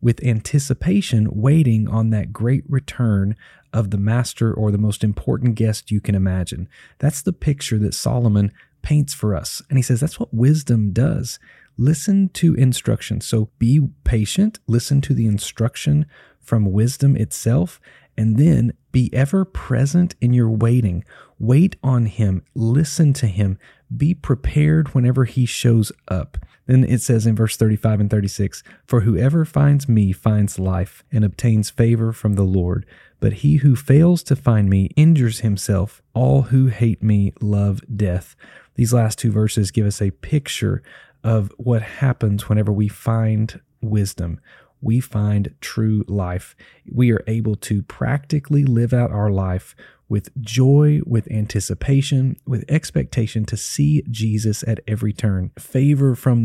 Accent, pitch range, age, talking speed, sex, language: American, 105-135 Hz, 30-49, 150 wpm, male, English